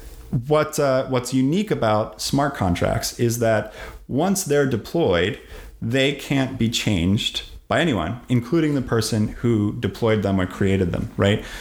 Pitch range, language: 100-130 Hz, English